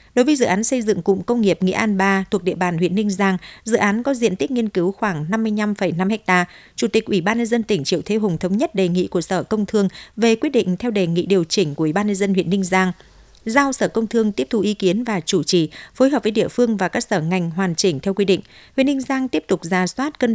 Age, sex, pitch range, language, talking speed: 60-79, female, 185-230 Hz, Vietnamese, 280 wpm